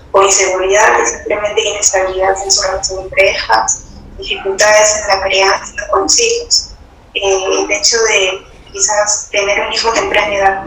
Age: 20-39